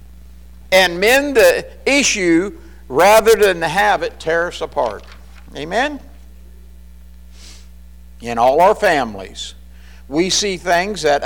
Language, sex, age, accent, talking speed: English, male, 50-69, American, 105 wpm